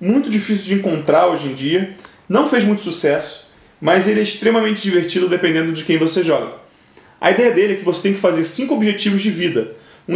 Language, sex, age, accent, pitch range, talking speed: Portuguese, male, 30-49, Brazilian, 150-210 Hz, 205 wpm